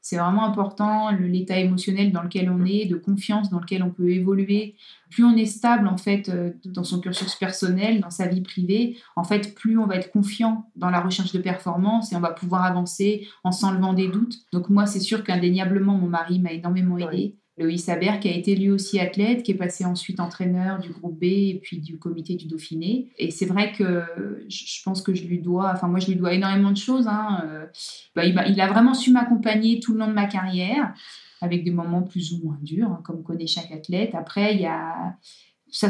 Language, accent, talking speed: French, French, 215 wpm